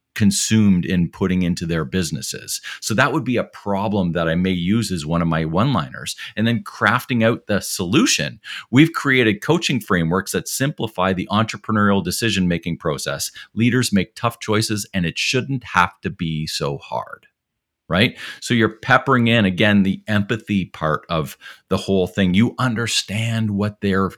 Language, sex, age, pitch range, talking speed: English, male, 50-69, 90-115 Hz, 165 wpm